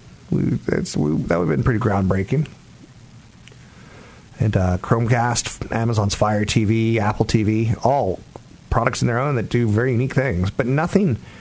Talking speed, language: 155 wpm, English